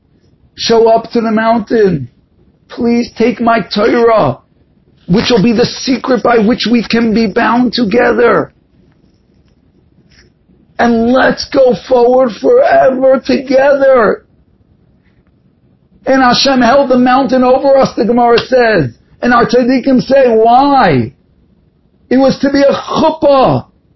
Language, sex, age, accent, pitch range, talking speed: English, male, 50-69, American, 235-295 Hz, 120 wpm